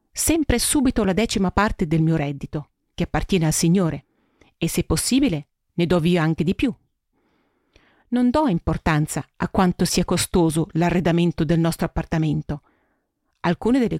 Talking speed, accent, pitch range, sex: 145 wpm, native, 160-225 Hz, female